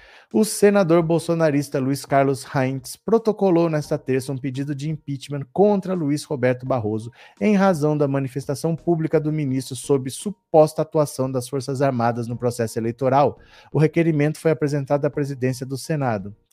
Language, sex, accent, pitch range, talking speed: Portuguese, male, Brazilian, 135-165 Hz, 155 wpm